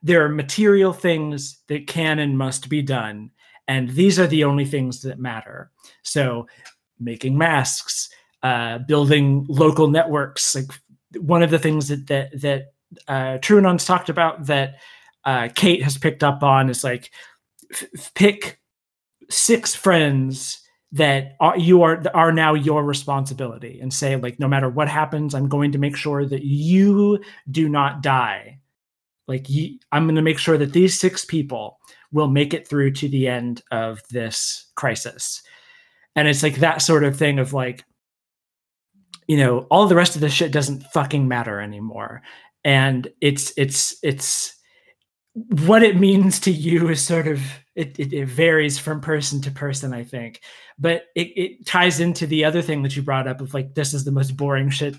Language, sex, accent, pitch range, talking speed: English, male, American, 135-165 Hz, 170 wpm